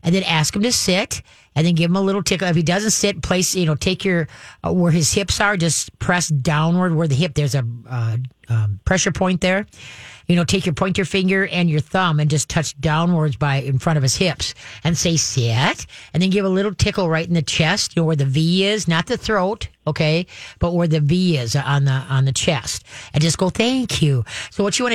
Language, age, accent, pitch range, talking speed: English, 50-69, American, 150-185 Hz, 245 wpm